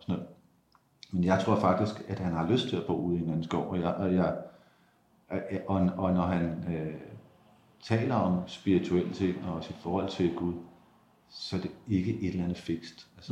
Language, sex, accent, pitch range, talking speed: Danish, male, native, 90-105 Hz, 200 wpm